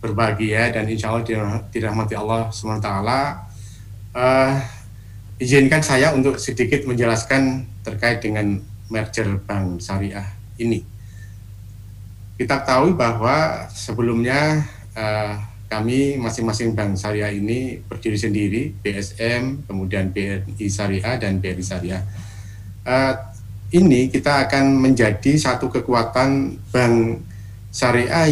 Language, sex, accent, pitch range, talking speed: Indonesian, male, native, 100-125 Hz, 105 wpm